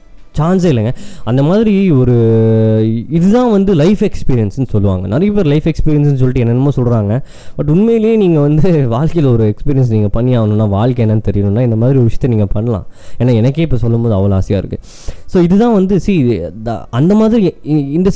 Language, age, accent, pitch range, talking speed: Tamil, 20-39, native, 100-135 Hz, 160 wpm